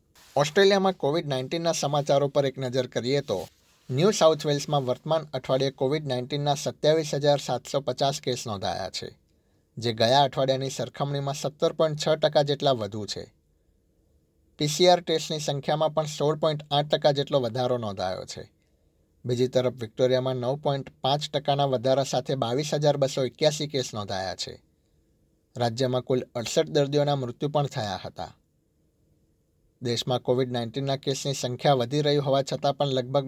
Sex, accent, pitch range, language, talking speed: male, native, 120-145 Hz, Gujarati, 145 wpm